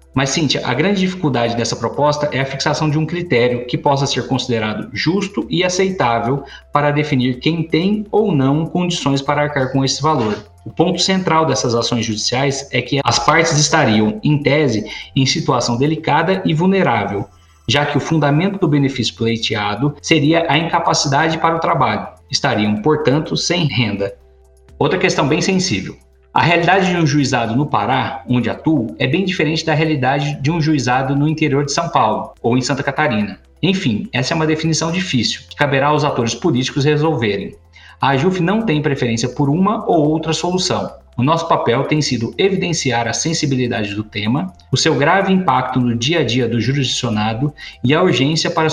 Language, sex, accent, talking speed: Portuguese, male, Brazilian, 175 wpm